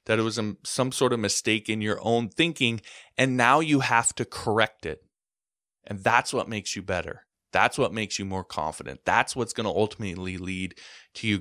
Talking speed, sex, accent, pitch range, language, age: 200 wpm, male, American, 95-120 Hz, English, 20-39